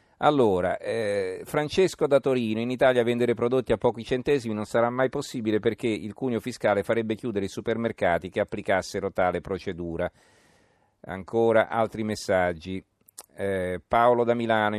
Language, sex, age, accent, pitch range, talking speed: Italian, male, 40-59, native, 95-115 Hz, 140 wpm